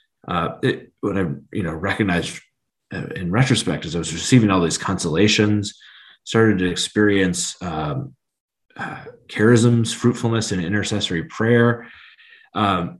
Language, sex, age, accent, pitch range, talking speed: English, male, 30-49, American, 85-120 Hz, 125 wpm